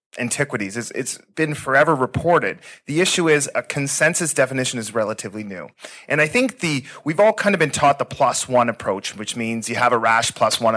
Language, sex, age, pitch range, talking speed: English, male, 30-49, 115-150 Hz, 200 wpm